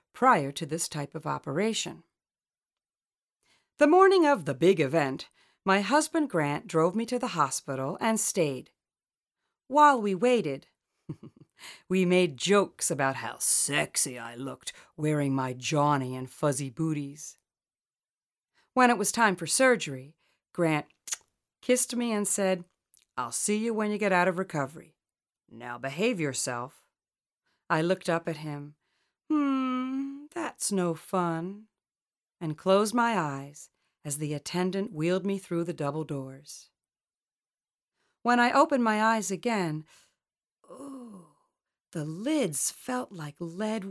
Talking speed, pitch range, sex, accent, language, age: 135 wpm, 150-225 Hz, female, American, English, 40-59